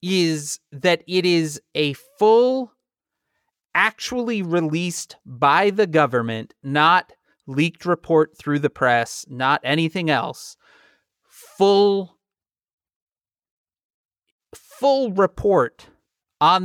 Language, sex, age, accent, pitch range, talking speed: English, male, 30-49, American, 135-185 Hz, 85 wpm